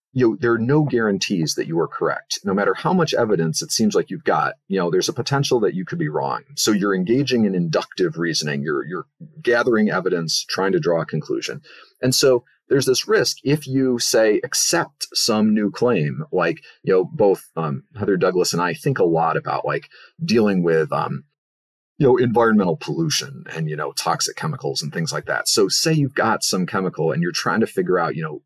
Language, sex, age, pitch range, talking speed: English, male, 40-59, 100-155 Hz, 215 wpm